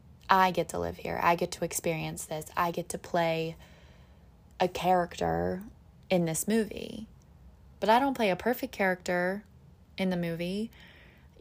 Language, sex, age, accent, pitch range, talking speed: English, female, 20-39, American, 165-205 Hz, 155 wpm